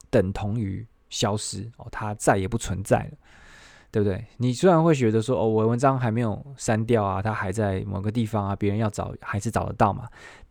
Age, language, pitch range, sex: 20-39, Chinese, 100-125 Hz, male